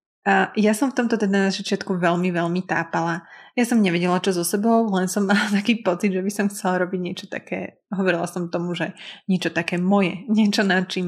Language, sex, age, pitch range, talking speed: Slovak, female, 20-39, 175-210 Hz, 210 wpm